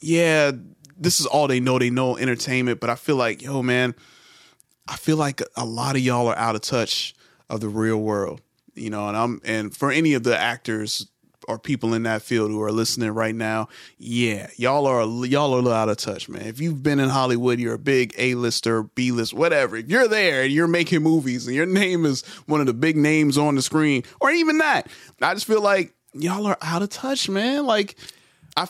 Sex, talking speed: male, 220 wpm